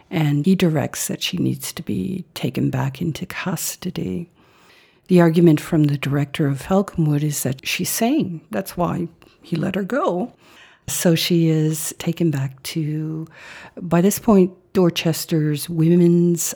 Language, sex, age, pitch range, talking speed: English, female, 50-69, 150-175 Hz, 145 wpm